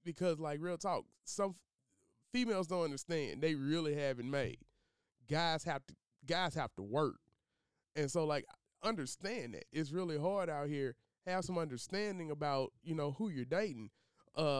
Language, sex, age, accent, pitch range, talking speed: English, male, 20-39, American, 135-175 Hz, 165 wpm